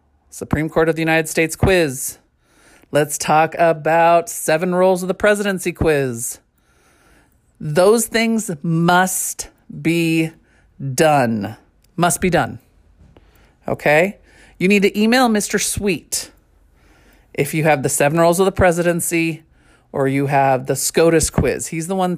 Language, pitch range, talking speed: English, 145-185 Hz, 135 wpm